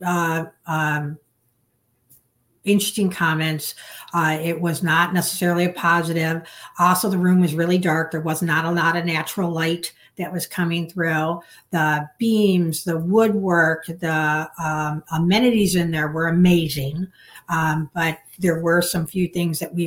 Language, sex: English, female